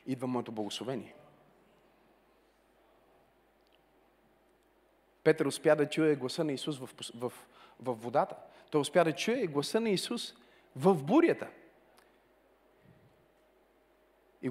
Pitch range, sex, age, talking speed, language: 215-305 Hz, male, 40-59, 100 wpm, Bulgarian